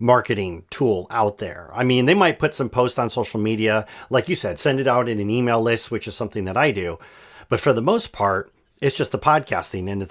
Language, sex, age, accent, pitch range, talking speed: English, male, 40-59, American, 100-125 Hz, 245 wpm